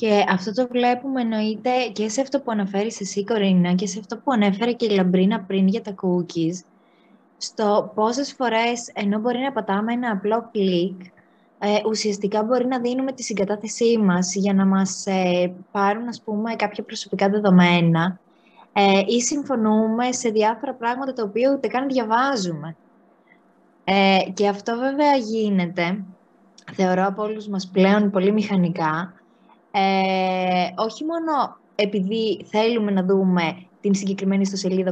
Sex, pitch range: female, 195-245 Hz